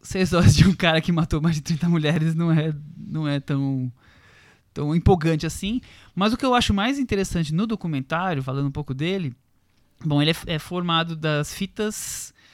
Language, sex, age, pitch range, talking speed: Portuguese, male, 20-39, 135-185 Hz, 185 wpm